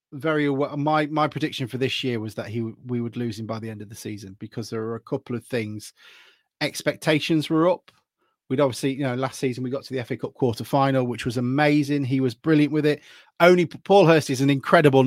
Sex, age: male, 30-49